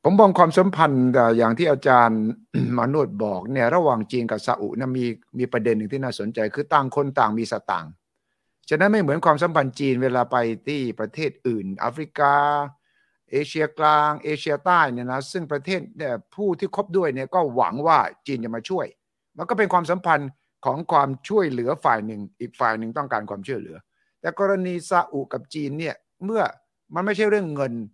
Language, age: English, 60-79